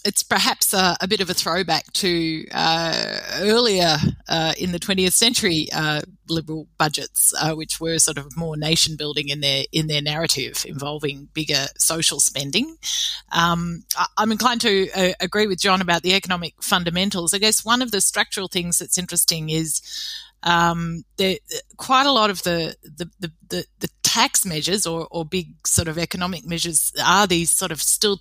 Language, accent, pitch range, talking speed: English, Australian, 155-185 Hz, 175 wpm